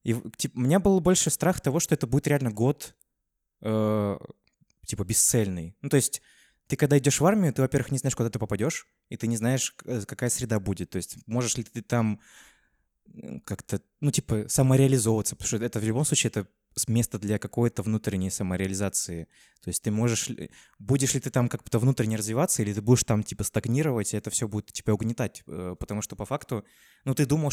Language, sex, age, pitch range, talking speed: Russian, male, 20-39, 100-125 Hz, 200 wpm